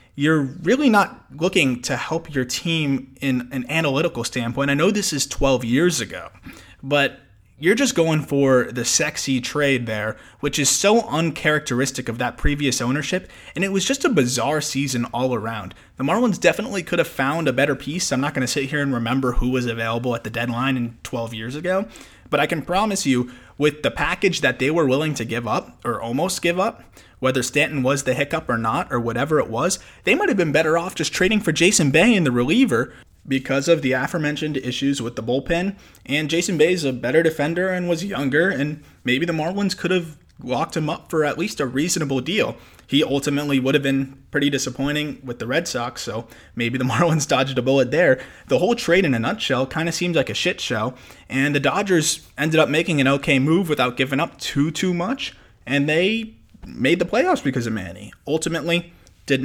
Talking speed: 210 wpm